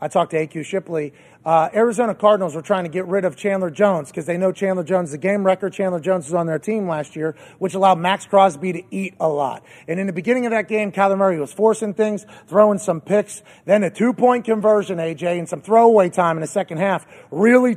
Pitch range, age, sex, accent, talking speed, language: 175-220 Hz, 30-49, male, American, 235 wpm, English